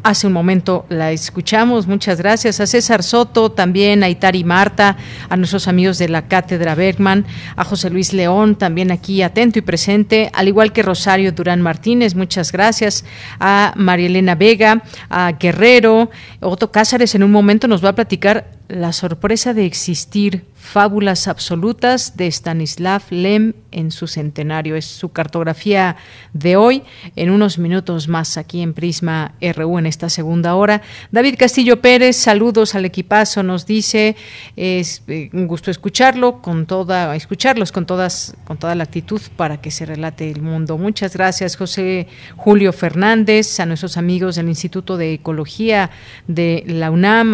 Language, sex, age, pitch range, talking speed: Spanish, female, 40-59, 170-210 Hz, 155 wpm